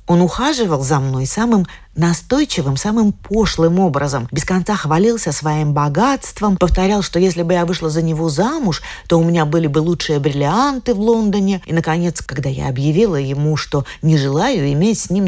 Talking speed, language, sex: 175 wpm, Russian, female